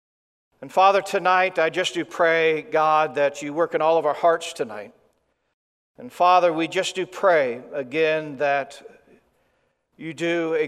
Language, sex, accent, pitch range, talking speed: English, male, American, 160-200 Hz, 155 wpm